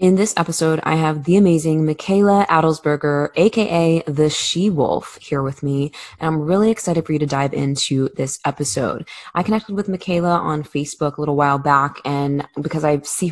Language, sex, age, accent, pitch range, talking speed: English, female, 20-39, American, 145-175 Hz, 180 wpm